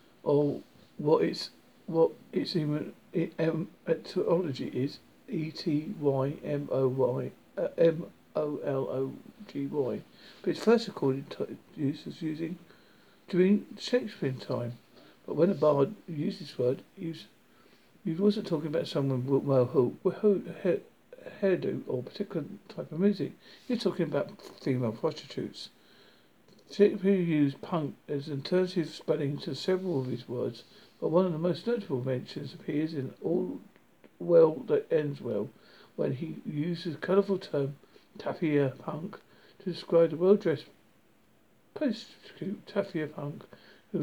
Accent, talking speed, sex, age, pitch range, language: British, 130 wpm, male, 60-79, 145-190 Hz, English